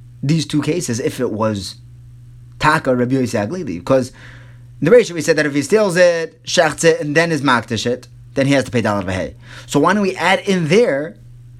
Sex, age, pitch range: male, 30-49, 120-185 Hz